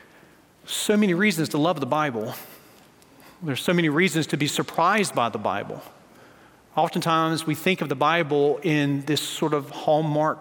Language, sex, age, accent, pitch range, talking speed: English, male, 40-59, American, 165-270 Hz, 160 wpm